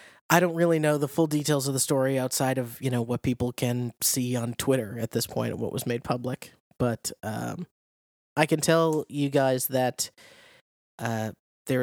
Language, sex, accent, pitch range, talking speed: English, male, American, 125-145 Hz, 195 wpm